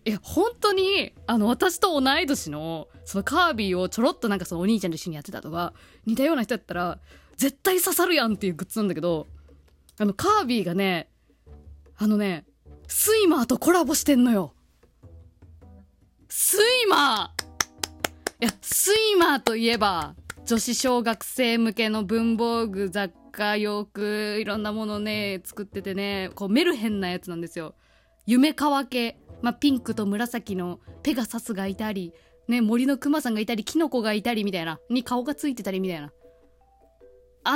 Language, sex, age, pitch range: Japanese, female, 20-39, 185-275 Hz